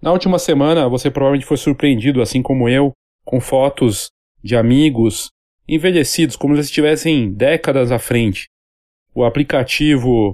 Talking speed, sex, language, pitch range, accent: 135 wpm, male, Portuguese, 120-160 Hz, Brazilian